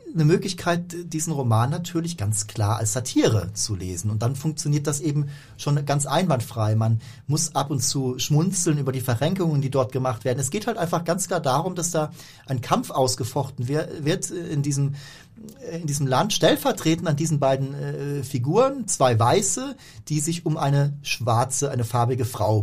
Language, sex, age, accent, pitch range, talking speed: German, male, 40-59, German, 135-165 Hz, 170 wpm